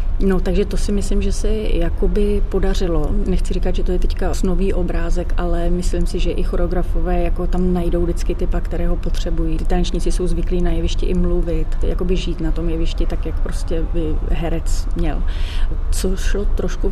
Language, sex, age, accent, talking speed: Czech, female, 30-49, native, 180 wpm